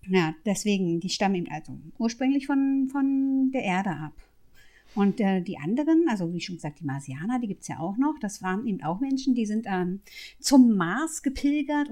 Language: German